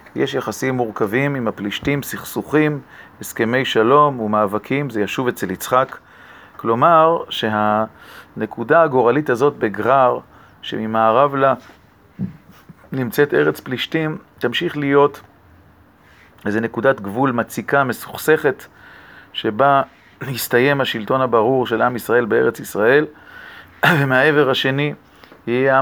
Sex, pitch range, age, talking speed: male, 110-140 Hz, 40-59, 100 wpm